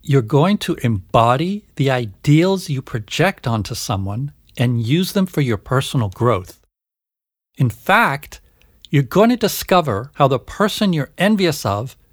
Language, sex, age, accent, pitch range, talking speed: English, male, 50-69, American, 120-170 Hz, 145 wpm